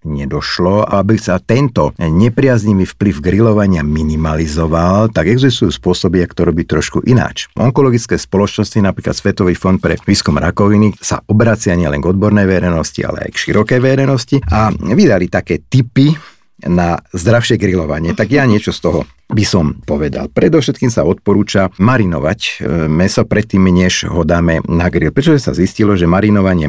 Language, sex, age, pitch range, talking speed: Slovak, male, 50-69, 85-110 Hz, 145 wpm